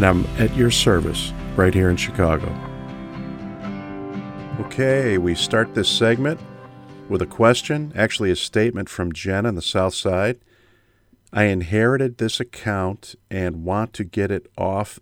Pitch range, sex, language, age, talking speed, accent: 85-110 Hz, male, English, 40-59, 145 wpm, American